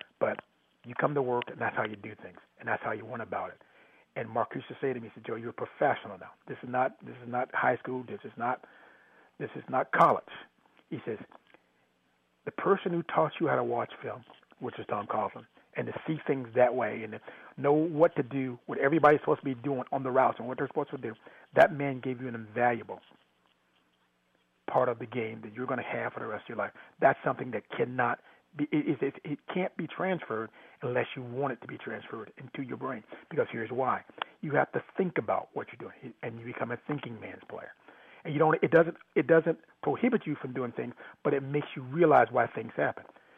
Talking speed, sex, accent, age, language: 230 wpm, male, American, 40-59, English